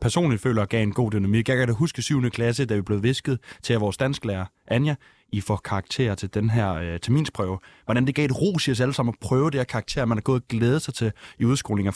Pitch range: 110-140 Hz